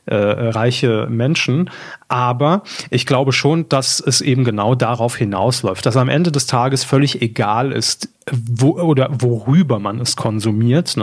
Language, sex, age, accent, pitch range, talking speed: German, male, 30-49, German, 120-145 Hz, 140 wpm